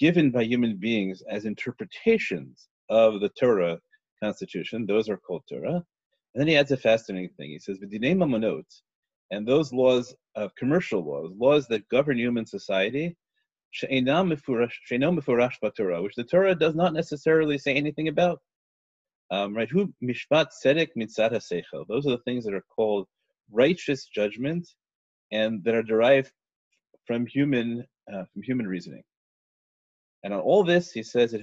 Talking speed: 130 wpm